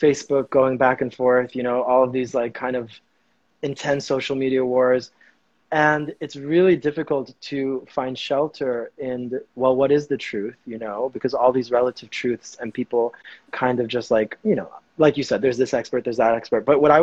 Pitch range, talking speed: 125-145 Hz, 200 wpm